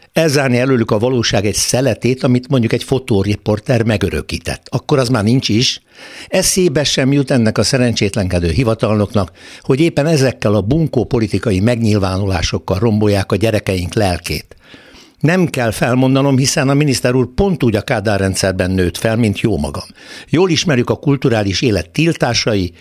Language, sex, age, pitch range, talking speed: Hungarian, male, 60-79, 100-135 Hz, 145 wpm